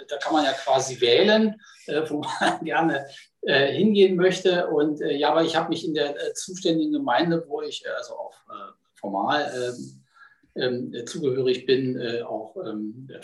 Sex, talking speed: male, 175 wpm